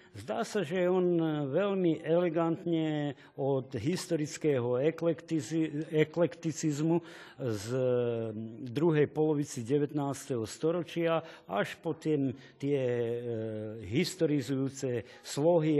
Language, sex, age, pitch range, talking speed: Slovak, male, 50-69, 125-170 Hz, 70 wpm